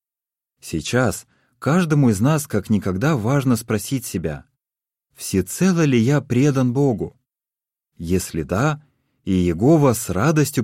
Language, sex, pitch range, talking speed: Russian, male, 90-135 Hz, 115 wpm